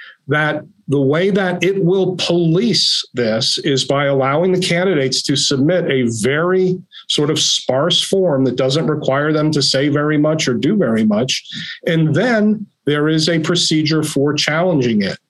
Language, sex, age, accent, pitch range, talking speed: English, male, 50-69, American, 135-175 Hz, 165 wpm